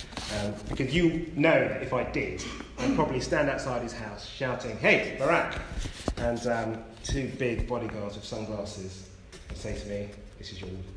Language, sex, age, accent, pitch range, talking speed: English, male, 30-49, British, 105-150 Hz, 170 wpm